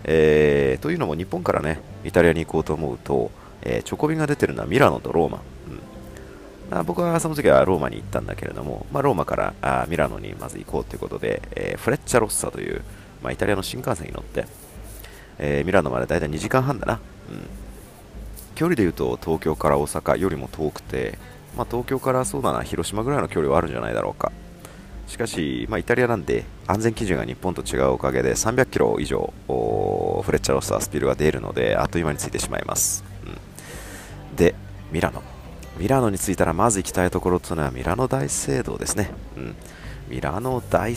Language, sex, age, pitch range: Japanese, male, 30-49, 70-100 Hz